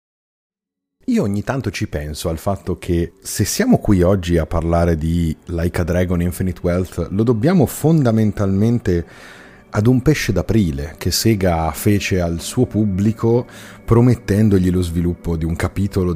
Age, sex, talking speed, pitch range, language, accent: 30-49, male, 145 wpm, 85-110 Hz, Italian, native